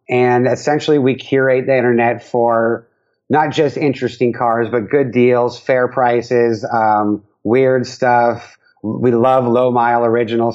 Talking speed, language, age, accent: 130 wpm, English, 30-49, American